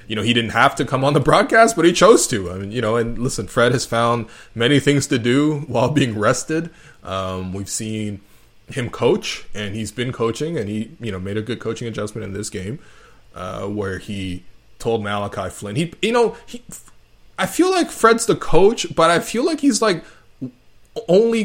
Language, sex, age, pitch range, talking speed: English, male, 20-39, 105-145 Hz, 205 wpm